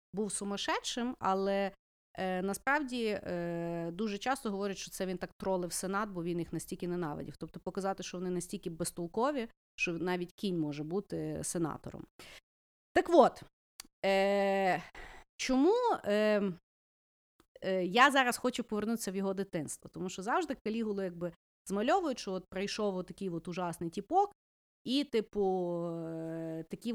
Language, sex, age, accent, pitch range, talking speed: Ukrainian, female, 30-49, native, 175-230 Hz, 130 wpm